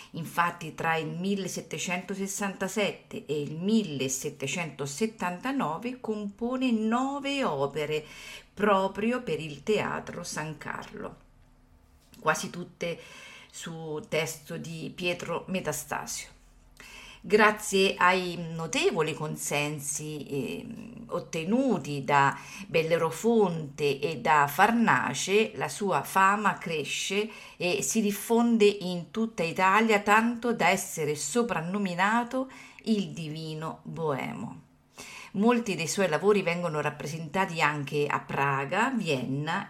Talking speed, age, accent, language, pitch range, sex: 90 wpm, 50-69, native, Italian, 155-215 Hz, female